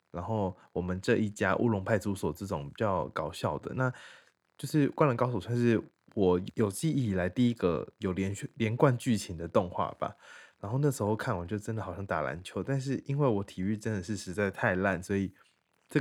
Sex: male